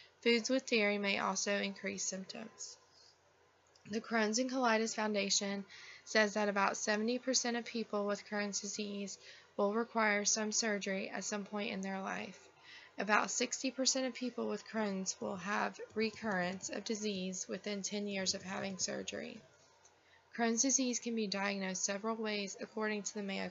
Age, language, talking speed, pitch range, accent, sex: 20-39, English, 150 wpm, 200-225 Hz, American, female